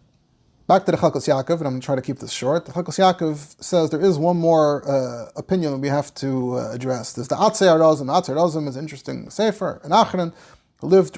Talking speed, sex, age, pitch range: 230 wpm, male, 30-49, 160-210 Hz